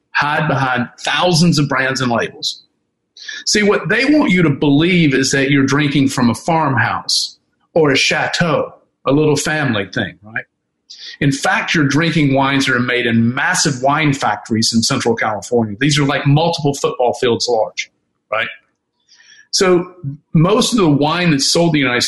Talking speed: 170 wpm